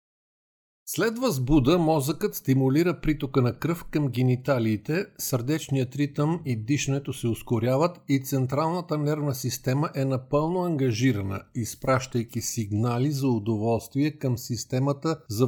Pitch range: 125-155 Hz